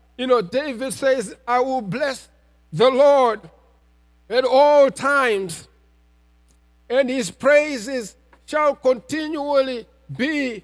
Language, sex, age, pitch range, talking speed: English, male, 50-69, 210-280 Hz, 100 wpm